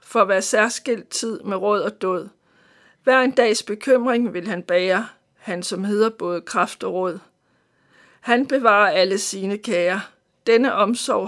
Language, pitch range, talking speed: Danish, 190-235 Hz, 160 wpm